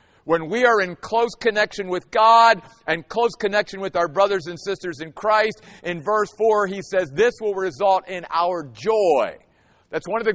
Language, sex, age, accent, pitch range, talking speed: English, male, 50-69, American, 160-215 Hz, 190 wpm